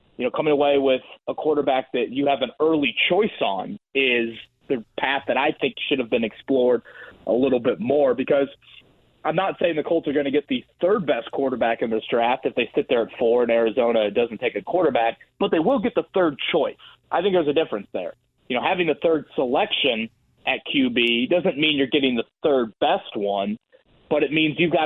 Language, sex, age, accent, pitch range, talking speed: English, male, 30-49, American, 130-155 Hz, 215 wpm